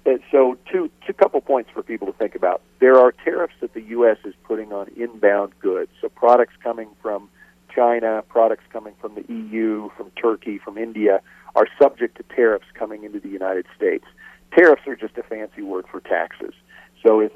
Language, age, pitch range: English, 50-69, 105-150 Hz